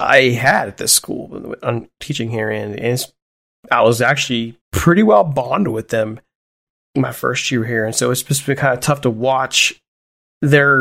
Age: 30-49